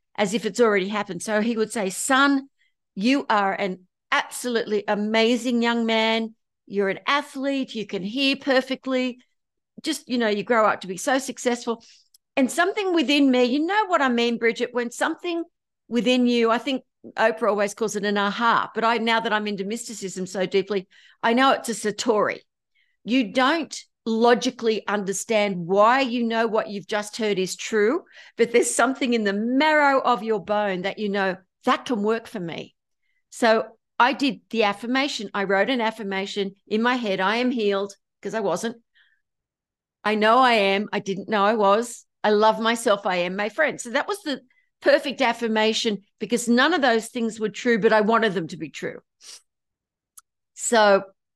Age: 50-69